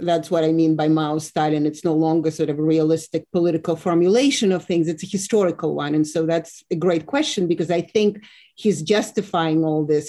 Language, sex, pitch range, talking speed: English, female, 155-185 Hz, 210 wpm